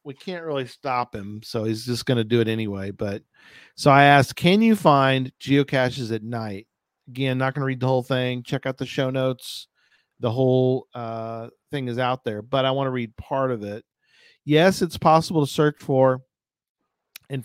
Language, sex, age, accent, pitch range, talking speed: English, male, 40-59, American, 120-150 Hz, 200 wpm